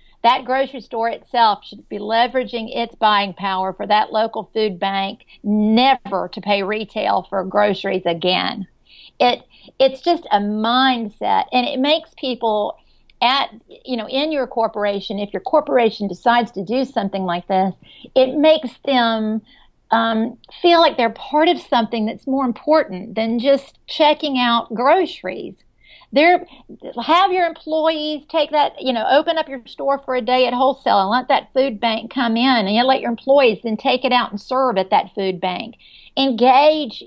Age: 50-69